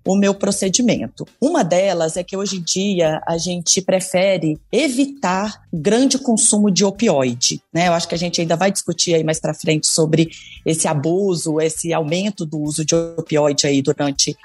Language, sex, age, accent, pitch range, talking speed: Portuguese, female, 30-49, Brazilian, 170-215 Hz, 175 wpm